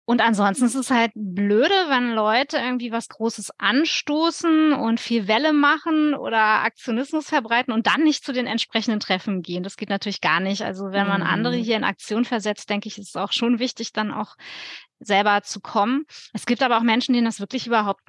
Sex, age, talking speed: female, 20-39, 200 wpm